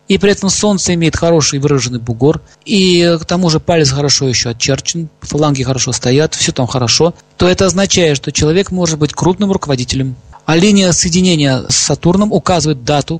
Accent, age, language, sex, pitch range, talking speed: native, 40-59, Russian, male, 140-185 Hz, 175 wpm